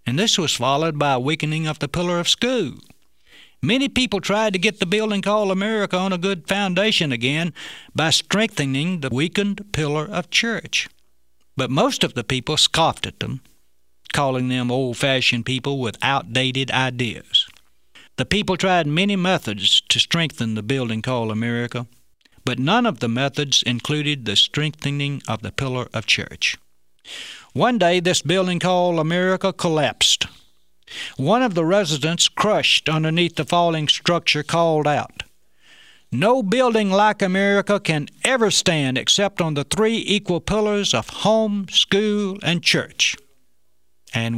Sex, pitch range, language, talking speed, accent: male, 120-195 Hz, English, 145 wpm, American